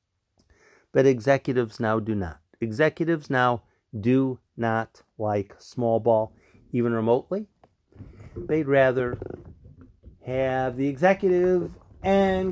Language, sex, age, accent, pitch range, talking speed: English, male, 50-69, American, 110-160 Hz, 95 wpm